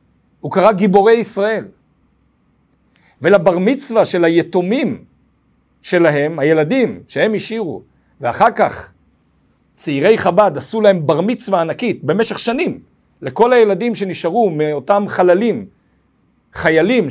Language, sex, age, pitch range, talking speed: Hebrew, male, 60-79, 170-225 Hz, 100 wpm